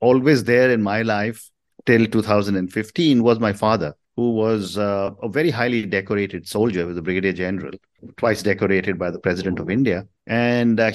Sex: male